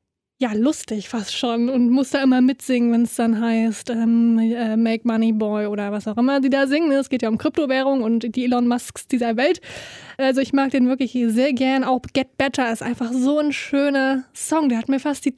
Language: German